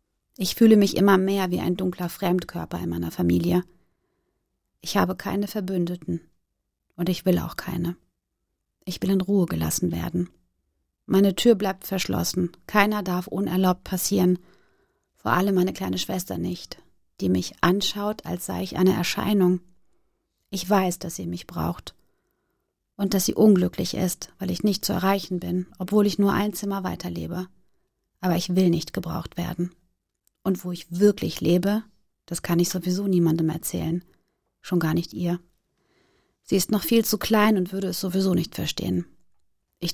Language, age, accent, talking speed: German, 30-49, German, 160 wpm